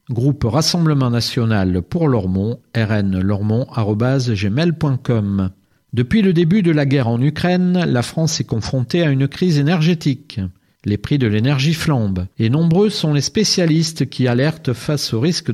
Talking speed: 145 wpm